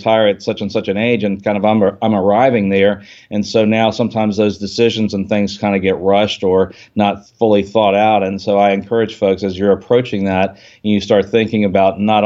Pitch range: 100-115 Hz